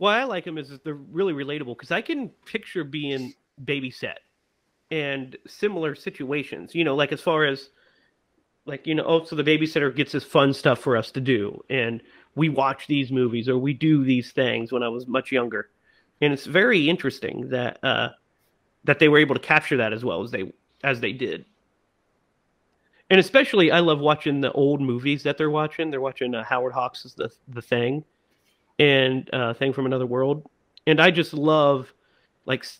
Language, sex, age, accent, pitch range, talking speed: English, male, 30-49, American, 130-160 Hz, 190 wpm